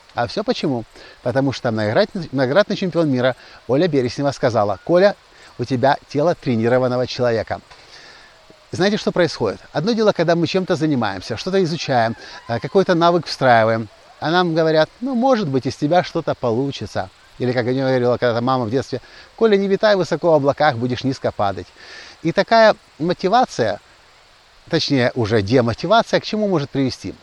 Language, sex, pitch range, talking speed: Russian, male, 120-175 Hz, 150 wpm